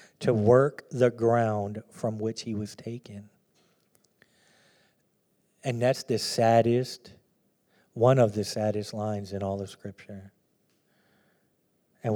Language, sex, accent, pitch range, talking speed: English, male, American, 105-125 Hz, 115 wpm